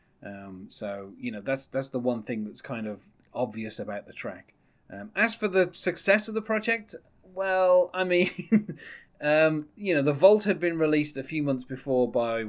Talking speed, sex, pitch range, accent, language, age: 190 wpm, male, 115-155 Hz, British, English, 30-49